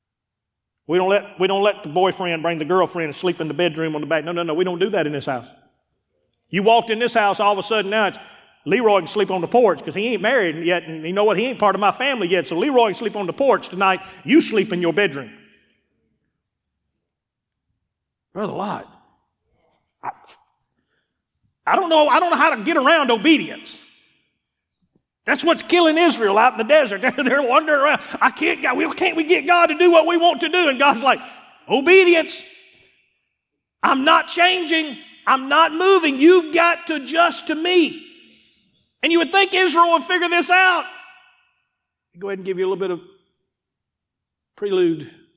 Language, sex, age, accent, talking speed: English, male, 40-59, American, 195 wpm